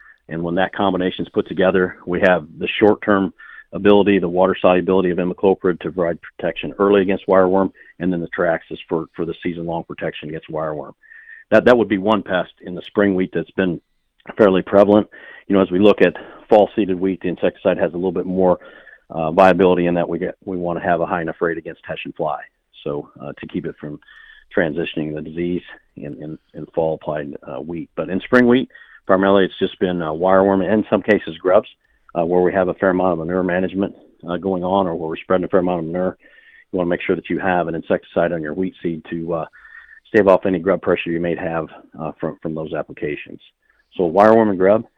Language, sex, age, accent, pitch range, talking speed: English, male, 40-59, American, 85-95 Hz, 225 wpm